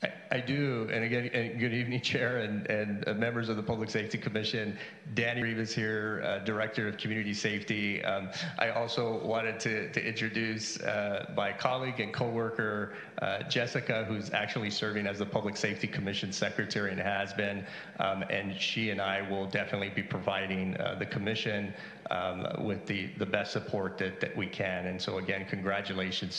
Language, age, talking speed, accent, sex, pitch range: English, 40-59, 170 wpm, American, male, 100-115 Hz